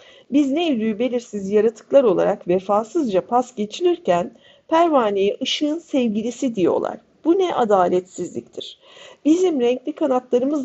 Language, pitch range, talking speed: Turkish, 210-285 Hz, 100 wpm